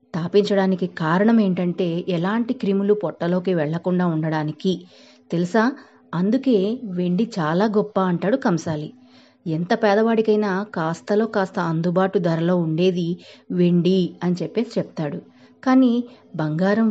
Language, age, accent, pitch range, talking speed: Telugu, 30-49, native, 165-215 Hz, 100 wpm